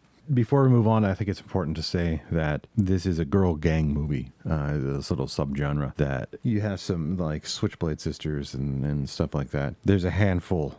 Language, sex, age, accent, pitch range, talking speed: English, male, 40-59, American, 70-85 Hz, 200 wpm